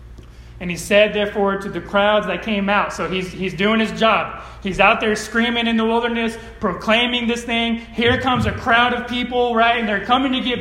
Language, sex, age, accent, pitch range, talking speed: English, male, 30-49, American, 200-255 Hz, 215 wpm